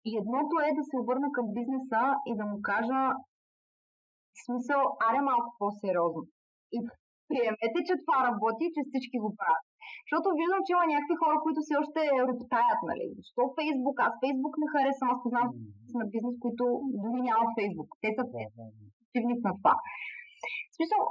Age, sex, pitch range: 20-39, female, 215-295 Hz